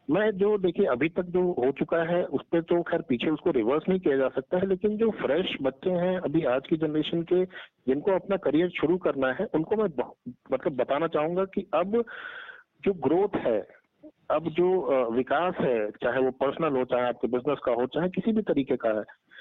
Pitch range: 140-195 Hz